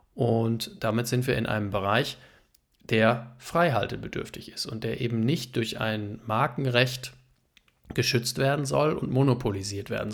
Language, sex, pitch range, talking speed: German, male, 105-125 Hz, 135 wpm